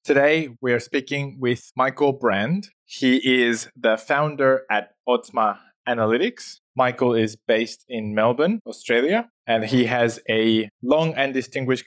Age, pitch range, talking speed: 20-39, 120-140 Hz, 130 wpm